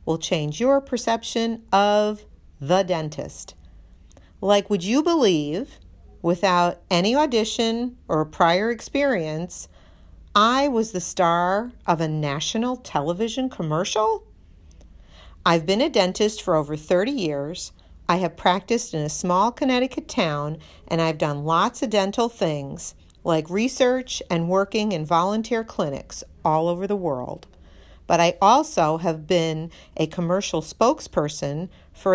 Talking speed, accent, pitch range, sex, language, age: 130 wpm, American, 160-225 Hz, female, English, 50-69